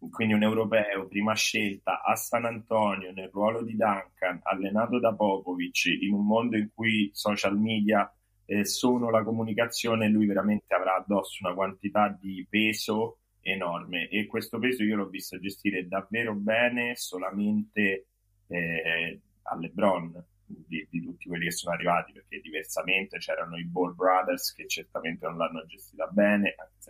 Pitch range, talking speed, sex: 95-110 Hz, 150 wpm, male